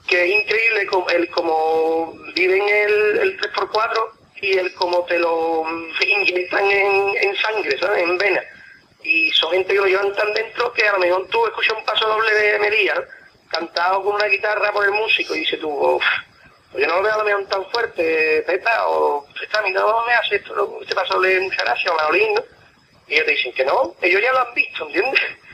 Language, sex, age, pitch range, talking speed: Spanish, male, 30-49, 170-270 Hz, 210 wpm